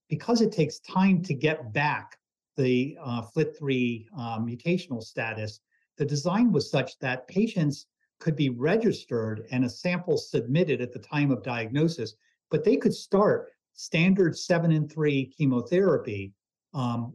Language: English